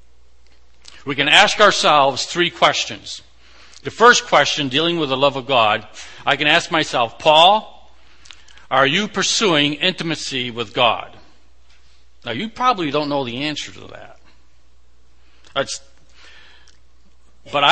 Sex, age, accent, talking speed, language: male, 60-79, American, 120 wpm, English